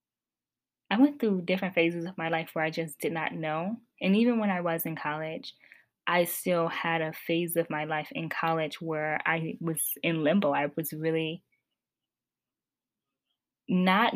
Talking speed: 170 wpm